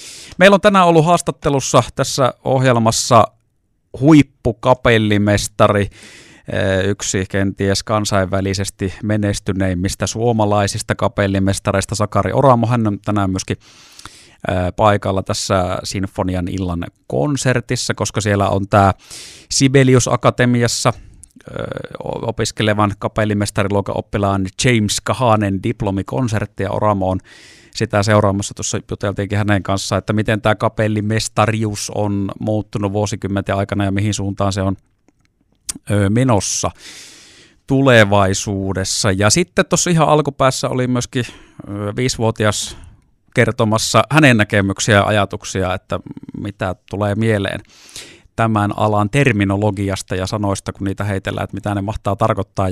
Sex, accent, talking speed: male, native, 100 wpm